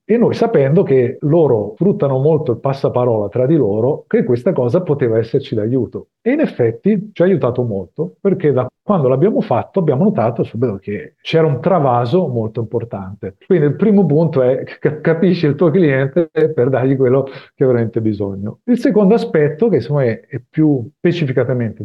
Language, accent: Italian, native